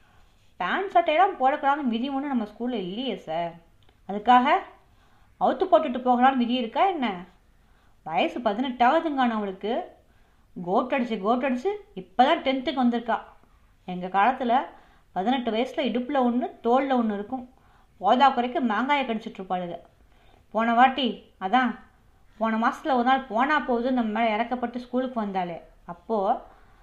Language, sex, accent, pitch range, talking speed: Tamil, female, native, 210-265 Hz, 110 wpm